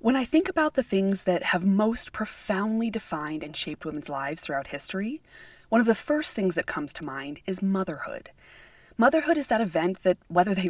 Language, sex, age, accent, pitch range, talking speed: English, female, 20-39, American, 165-215 Hz, 195 wpm